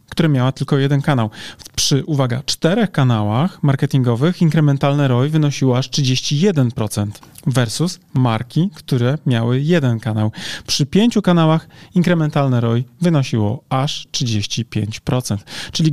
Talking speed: 115 wpm